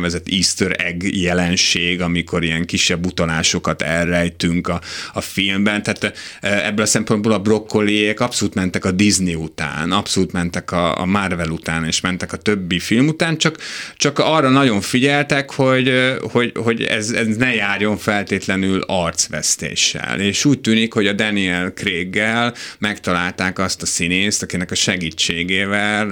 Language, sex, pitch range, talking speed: Hungarian, male, 85-105 Hz, 145 wpm